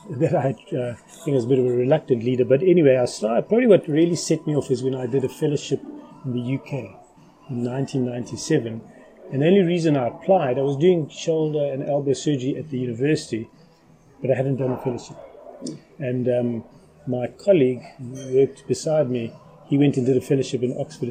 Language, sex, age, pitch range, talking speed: English, male, 30-49, 125-155 Hz, 200 wpm